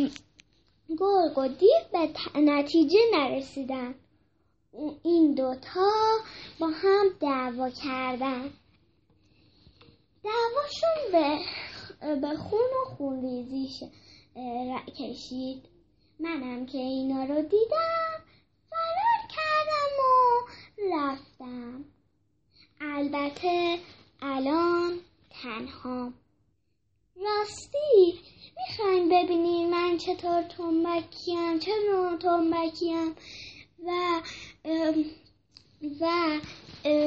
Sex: female